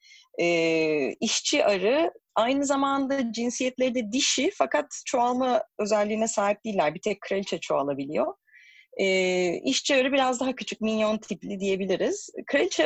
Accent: native